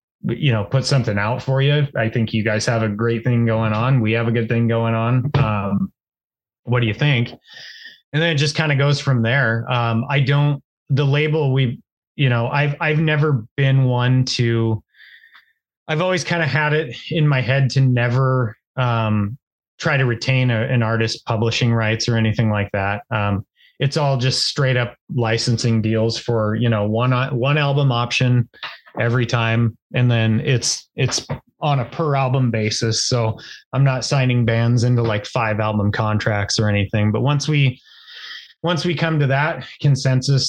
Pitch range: 115-140 Hz